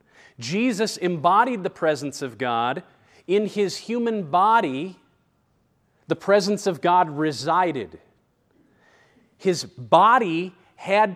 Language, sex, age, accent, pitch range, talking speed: English, male, 40-59, American, 165-205 Hz, 95 wpm